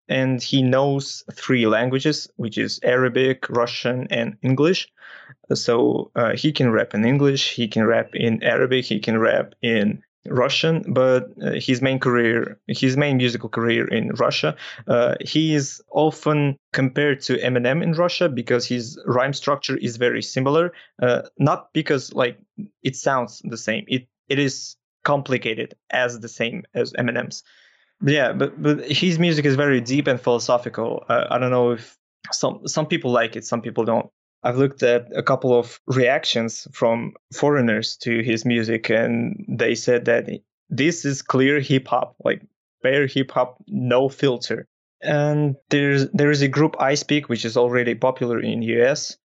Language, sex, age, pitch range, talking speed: English, male, 20-39, 120-145 Hz, 165 wpm